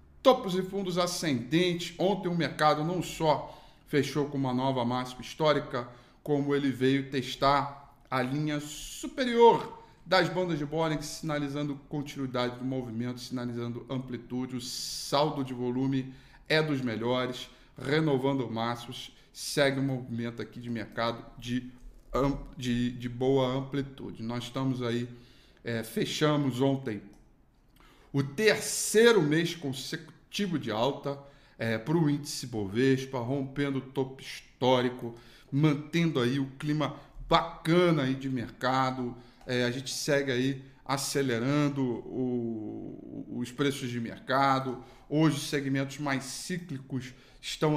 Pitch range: 125-145 Hz